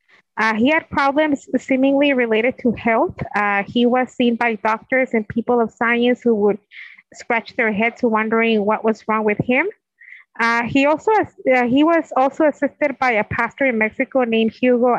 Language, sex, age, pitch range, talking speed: English, female, 20-39, 225-265 Hz, 175 wpm